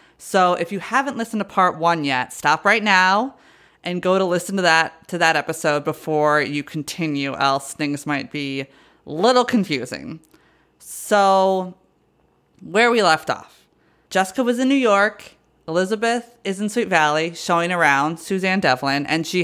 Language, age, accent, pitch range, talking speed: English, 20-39, American, 155-195 Hz, 165 wpm